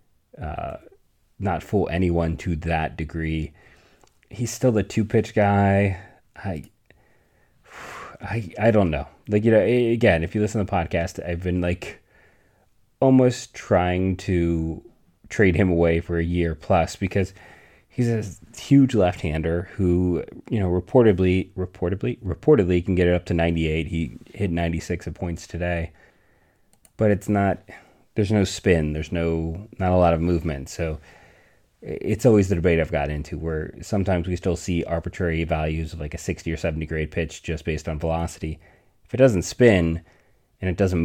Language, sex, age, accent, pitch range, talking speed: English, male, 30-49, American, 80-100 Hz, 165 wpm